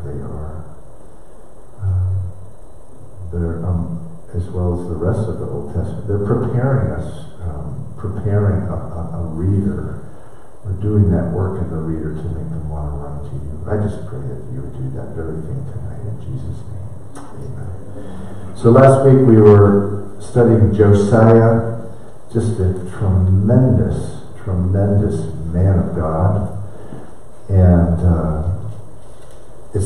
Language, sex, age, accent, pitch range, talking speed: English, male, 50-69, American, 90-110 Hz, 140 wpm